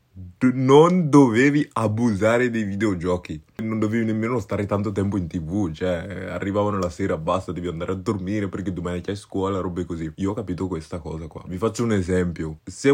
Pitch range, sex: 90-115 Hz, male